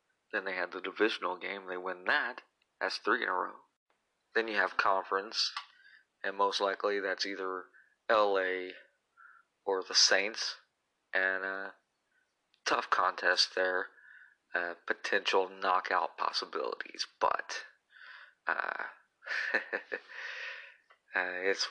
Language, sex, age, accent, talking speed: English, male, 30-49, American, 110 wpm